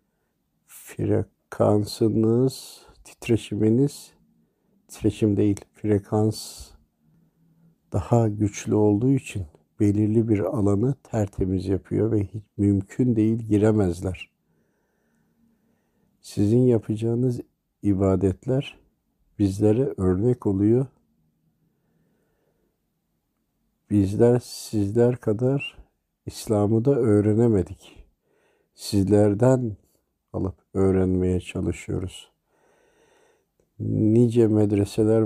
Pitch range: 95-115 Hz